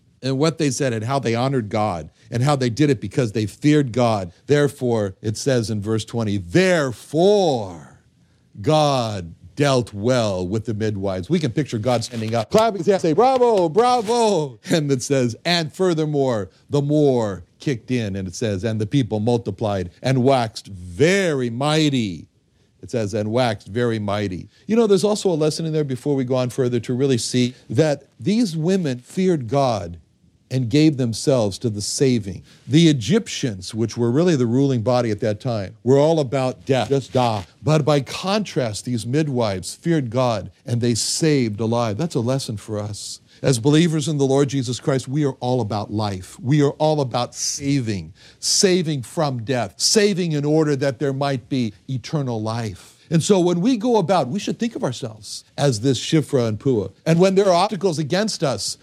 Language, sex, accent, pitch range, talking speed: English, male, American, 115-155 Hz, 185 wpm